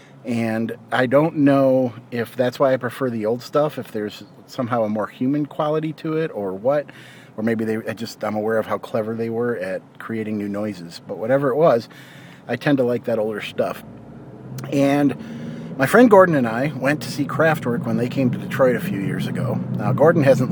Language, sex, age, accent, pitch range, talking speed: English, male, 40-59, American, 110-160 Hz, 210 wpm